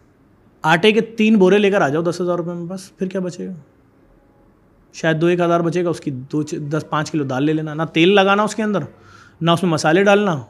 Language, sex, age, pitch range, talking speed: Urdu, male, 30-49, 155-200 Hz, 245 wpm